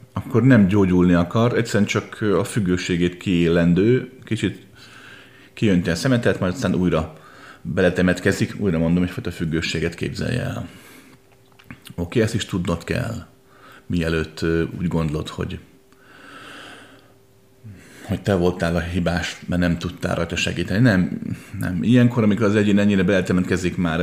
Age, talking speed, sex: 30-49, 135 wpm, male